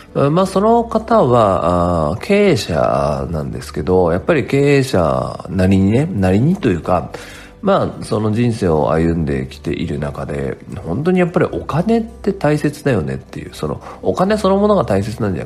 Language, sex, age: Japanese, male, 40-59